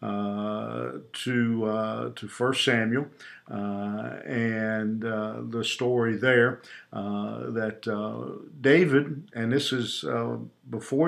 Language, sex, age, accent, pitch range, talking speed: English, male, 50-69, American, 110-125 Hz, 115 wpm